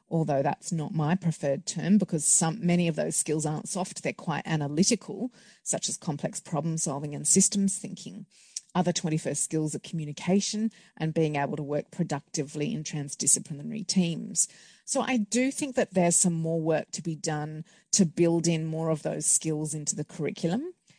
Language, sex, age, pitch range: Chinese, female, 30-49, 155-195 Hz